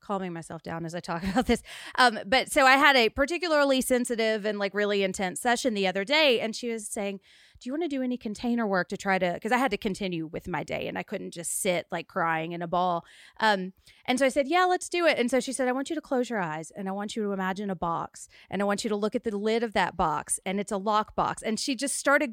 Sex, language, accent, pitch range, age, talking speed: female, English, American, 200-250 Hz, 30-49, 285 wpm